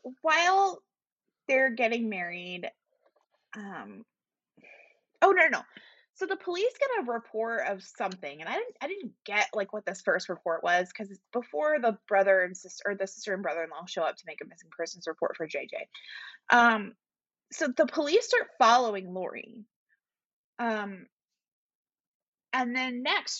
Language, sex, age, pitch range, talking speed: English, female, 20-39, 185-240 Hz, 160 wpm